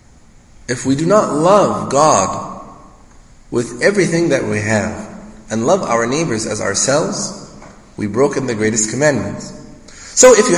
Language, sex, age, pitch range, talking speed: English, male, 30-49, 125-180 Hz, 140 wpm